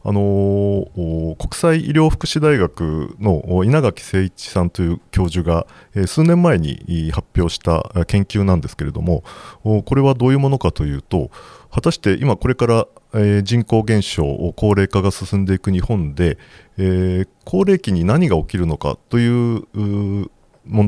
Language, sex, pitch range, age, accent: Japanese, male, 90-125 Hz, 40-59, native